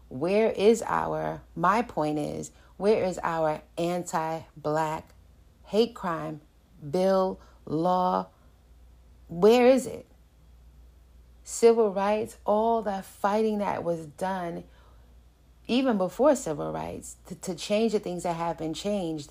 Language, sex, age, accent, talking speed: English, female, 30-49, American, 120 wpm